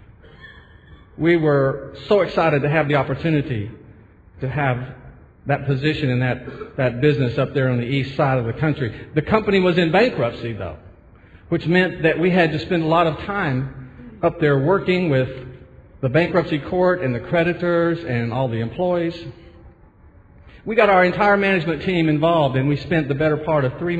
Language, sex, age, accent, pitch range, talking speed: English, male, 50-69, American, 110-160 Hz, 180 wpm